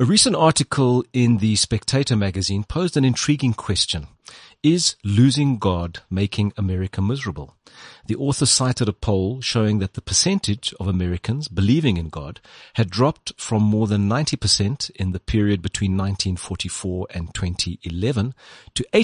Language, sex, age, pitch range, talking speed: English, male, 40-59, 95-130 Hz, 130 wpm